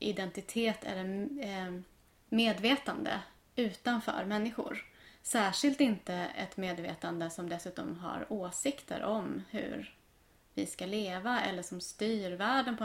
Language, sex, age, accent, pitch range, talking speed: Swedish, female, 20-39, native, 185-235 Hz, 105 wpm